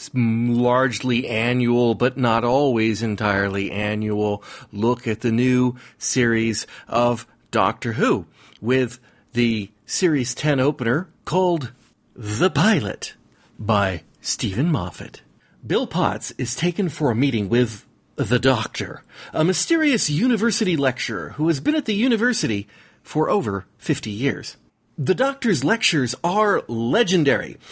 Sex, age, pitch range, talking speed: male, 40-59, 120-190 Hz, 120 wpm